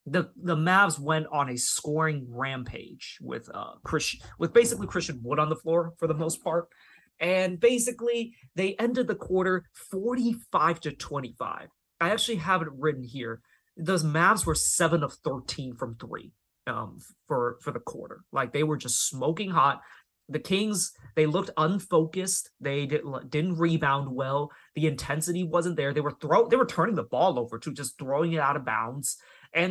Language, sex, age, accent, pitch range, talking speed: English, male, 20-39, American, 135-180 Hz, 175 wpm